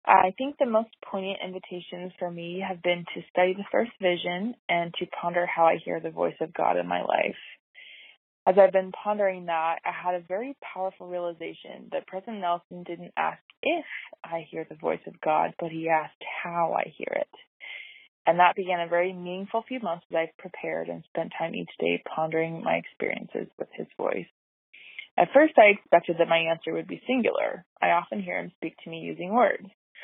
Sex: female